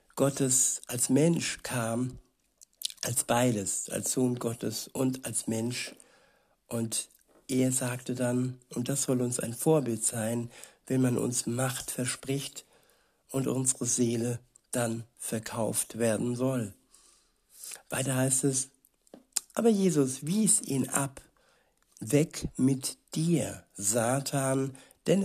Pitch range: 120-140 Hz